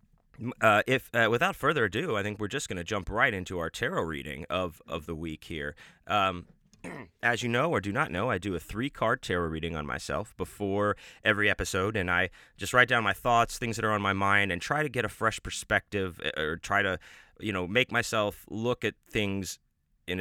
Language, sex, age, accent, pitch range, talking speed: English, male, 30-49, American, 90-110 Hz, 220 wpm